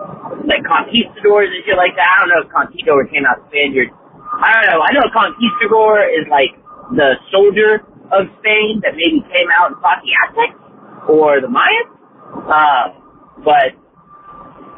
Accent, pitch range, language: American, 190-280 Hz, English